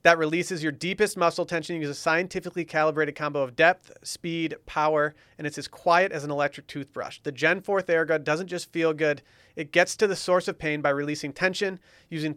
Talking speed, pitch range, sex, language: 210 wpm, 145-170 Hz, male, English